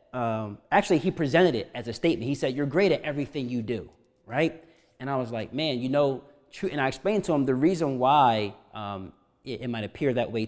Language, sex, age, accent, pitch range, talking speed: English, male, 30-49, American, 135-195 Hz, 230 wpm